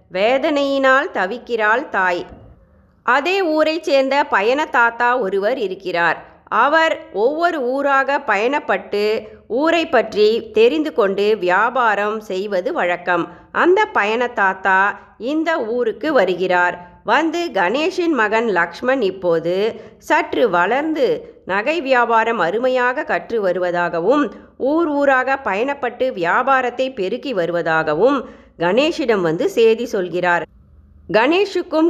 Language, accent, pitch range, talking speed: Tamil, native, 195-295 Hz, 90 wpm